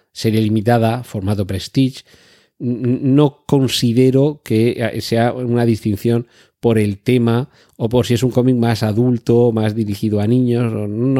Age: 40-59